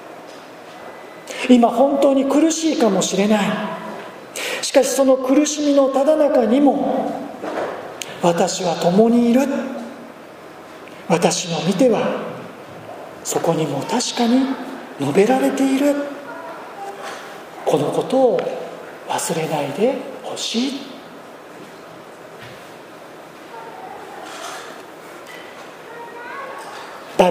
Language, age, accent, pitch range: Japanese, 40-59, native, 190-265 Hz